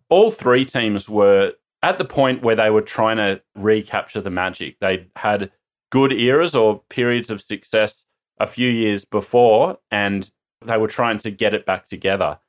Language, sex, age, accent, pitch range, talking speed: English, male, 30-49, Australian, 100-125 Hz, 175 wpm